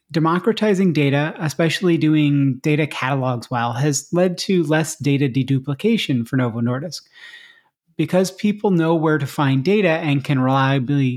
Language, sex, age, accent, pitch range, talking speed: English, male, 30-49, American, 140-175 Hz, 140 wpm